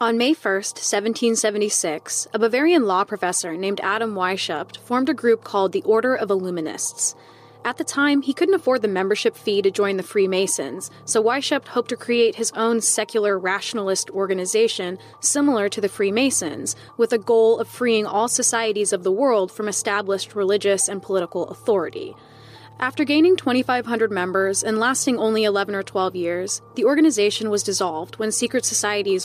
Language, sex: English, female